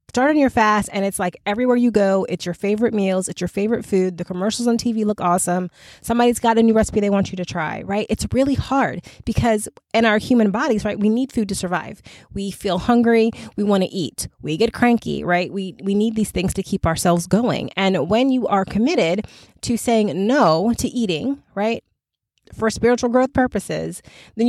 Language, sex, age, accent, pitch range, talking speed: English, female, 20-39, American, 185-225 Hz, 210 wpm